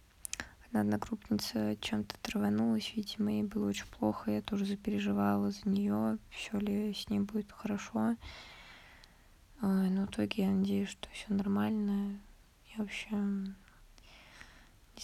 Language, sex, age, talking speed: Russian, female, 20-39, 125 wpm